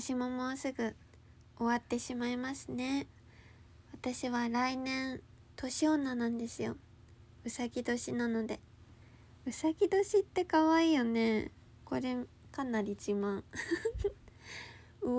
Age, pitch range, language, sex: 20-39, 200-250 Hz, Japanese, female